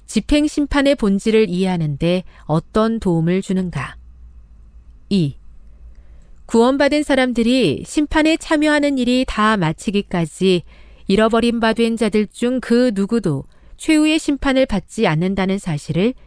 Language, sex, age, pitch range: Korean, female, 40-59, 160-240 Hz